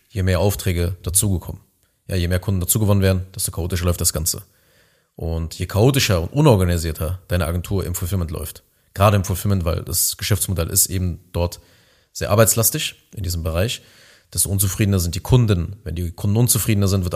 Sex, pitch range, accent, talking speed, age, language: male, 90-105 Hz, German, 170 wpm, 30-49, German